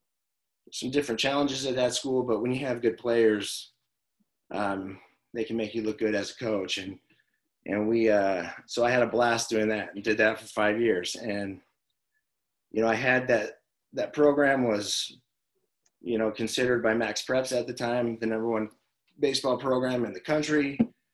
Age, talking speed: 30-49, 185 wpm